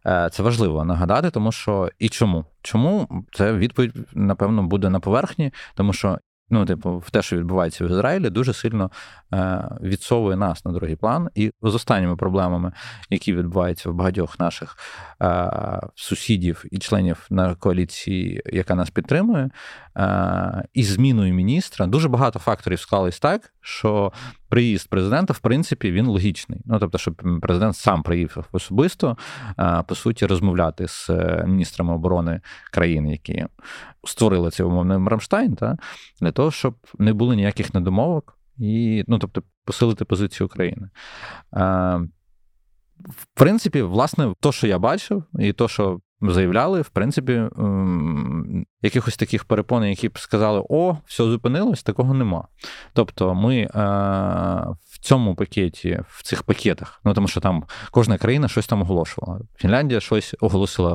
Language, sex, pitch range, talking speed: Ukrainian, male, 90-120 Hz, 140 wpm